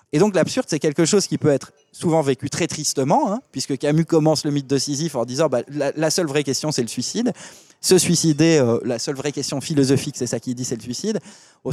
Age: 20-39